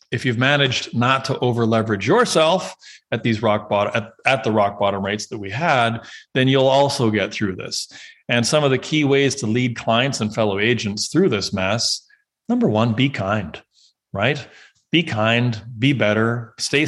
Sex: male